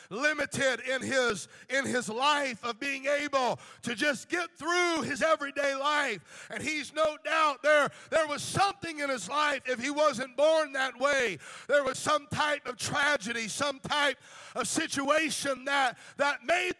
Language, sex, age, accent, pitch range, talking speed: English, male, 50-69, American, 235-285 Hz, 160 wpm